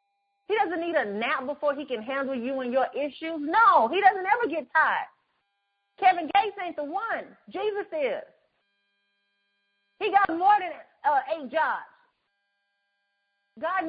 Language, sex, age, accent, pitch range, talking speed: English, female, 30-49, American, 240-360 Hz, 145 wpm